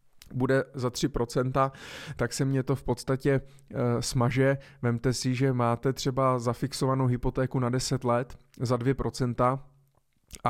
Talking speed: 125 wpm